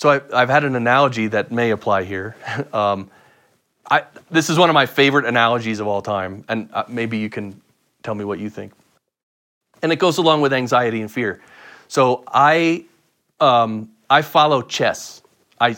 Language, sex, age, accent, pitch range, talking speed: English, male, 30-49, American, 110-140 Hz, 170 wpm